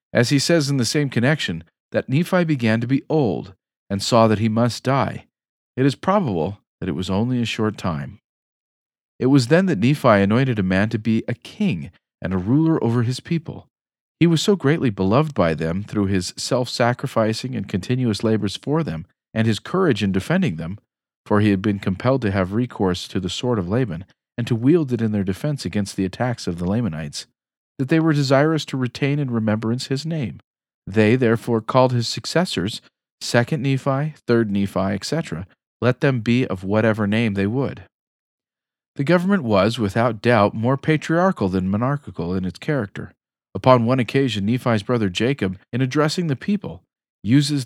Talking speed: 185 wpm